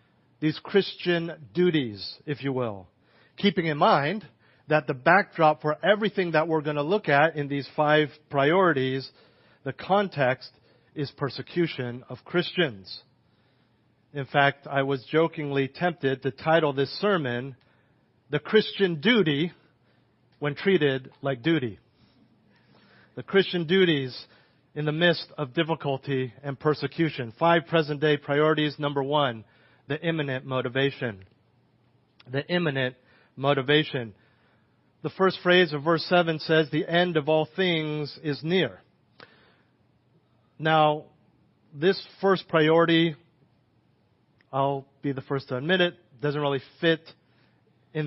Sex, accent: male, American